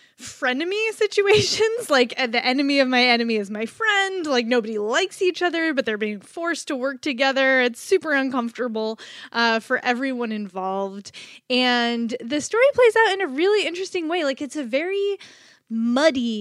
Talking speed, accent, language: 165 wpm, American, English